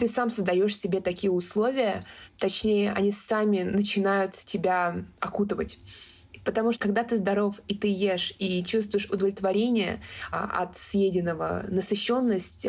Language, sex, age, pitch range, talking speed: Russian, female, 20-39, 180-210 Hz, 130 wpm